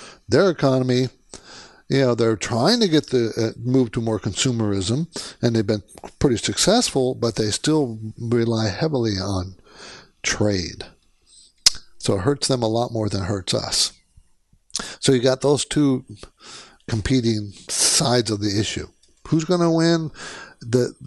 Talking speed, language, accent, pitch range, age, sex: 150 wpm, English, American, 110-140 Hz, 60-79, male